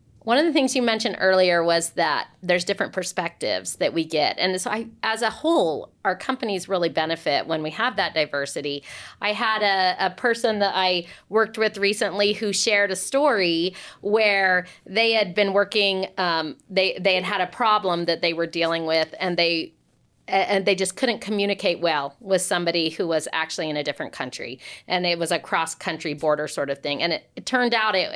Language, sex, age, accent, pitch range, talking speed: English, female, 40-59, American, 170-205 Hz, 195 wpm